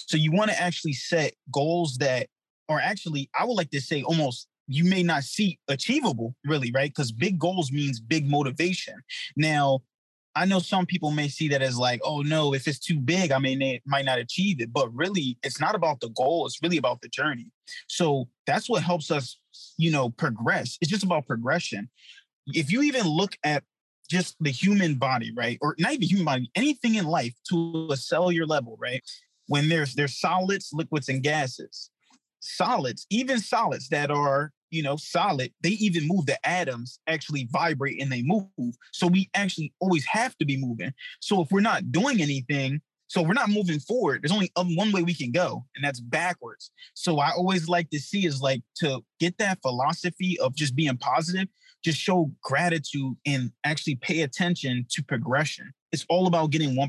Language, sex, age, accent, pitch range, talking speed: English, male, 20-39, American, 140-180 Hz, 190 wpm